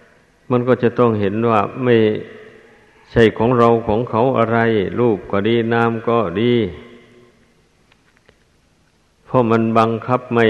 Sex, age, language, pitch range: male, 60-79, Thai, 105-115 Hz